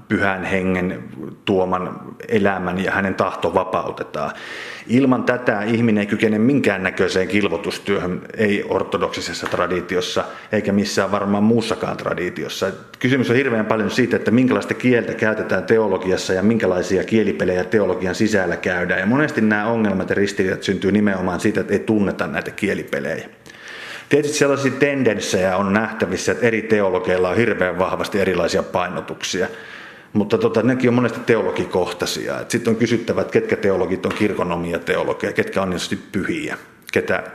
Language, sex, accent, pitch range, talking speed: Finnish, male, native, 95-115 Hz, 130 wpm